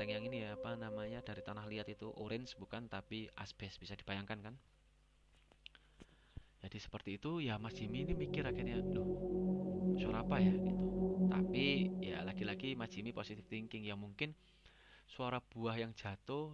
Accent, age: native, 30-49